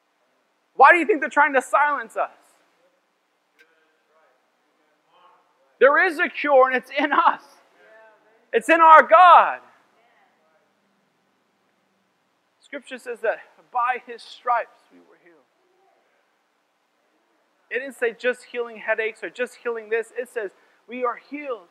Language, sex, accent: English, male, American